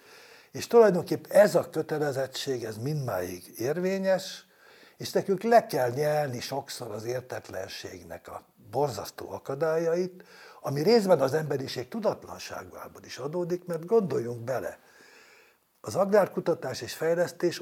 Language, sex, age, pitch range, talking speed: Hungarian, male, 60-79, 135-190 Hz, 110 wpm